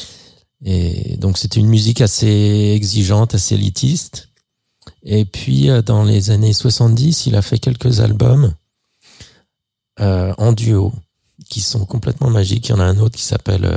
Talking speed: 155 wpm